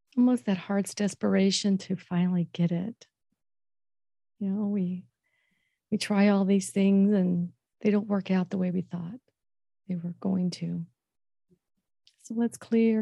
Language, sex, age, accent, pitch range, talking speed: English, female, 40-59, American, 185-210 Hz, 145 wpm